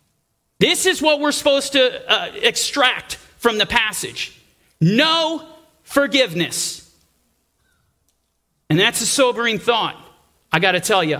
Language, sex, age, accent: English, male, 40-59, American